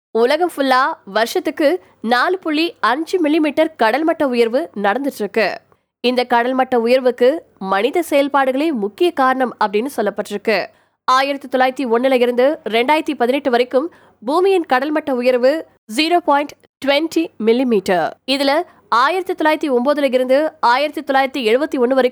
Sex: female